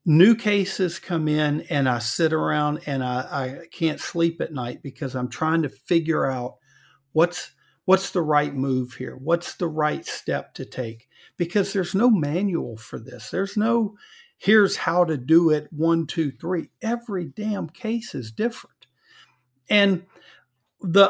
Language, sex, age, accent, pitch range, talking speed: English, male, 50-69, American, 145-195 Hz, 160 wpm